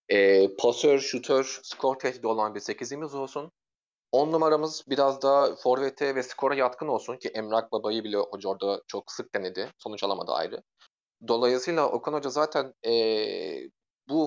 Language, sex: Turkish, male